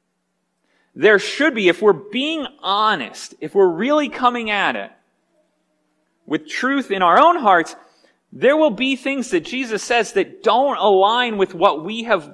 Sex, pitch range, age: male, 195-265 Hz, 30-49